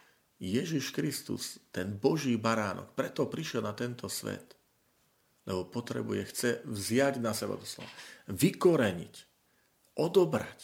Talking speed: 115 wpm